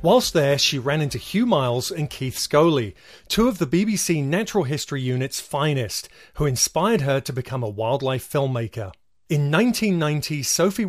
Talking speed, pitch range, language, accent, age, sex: 160 wpm, 130-185 Hz, English, British, 30-49, male